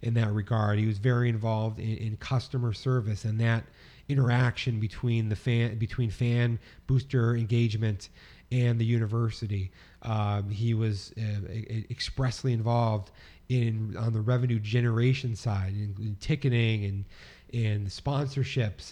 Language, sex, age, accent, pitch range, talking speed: English, male, 30-49, American, 105-120 Hz, 140 wpm